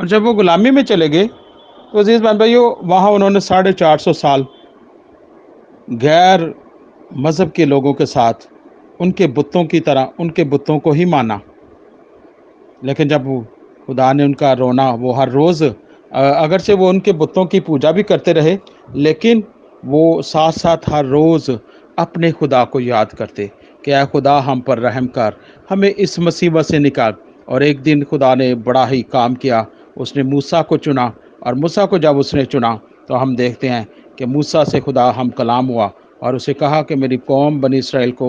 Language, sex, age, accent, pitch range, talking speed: Hindi, male, 40-59, native, 140-200 Hz, 175 wpm